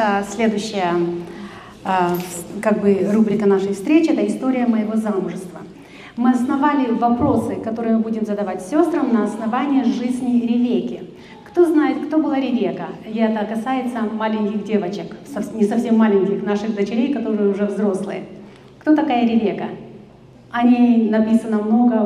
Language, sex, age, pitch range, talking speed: Russian, female, 30-49, 205-245 Hz, 130 wpm